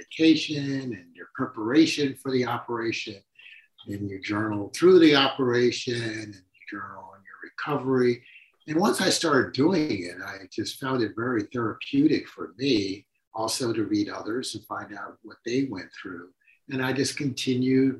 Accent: American